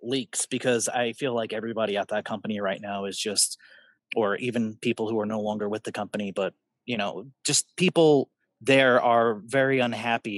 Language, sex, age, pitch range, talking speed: English, male, 30-49, 115-140 Hz, 185 wpm